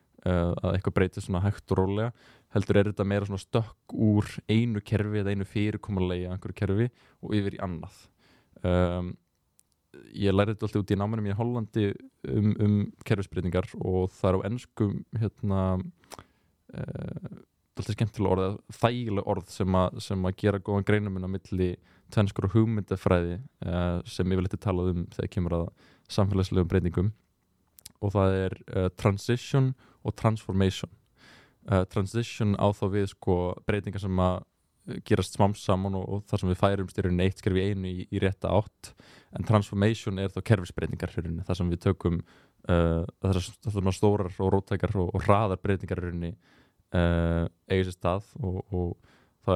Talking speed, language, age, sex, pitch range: 160 wpm, English, 20-39, male, 90-105 Hz